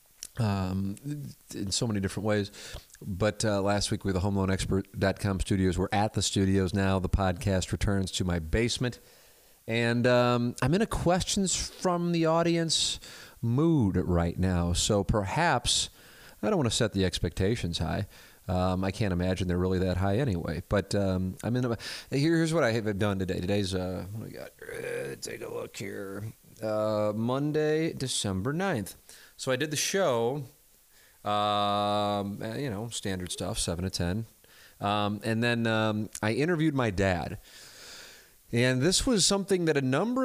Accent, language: American, English